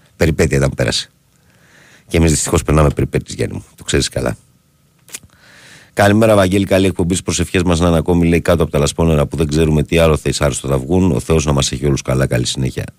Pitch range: 75-95 Hz